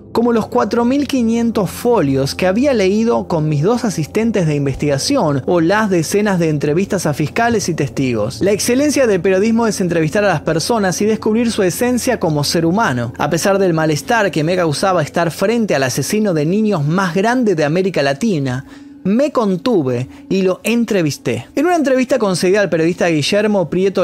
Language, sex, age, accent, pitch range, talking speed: Spanish, male, 20-39, Argentinian, 150-230 Hz, 170 wpm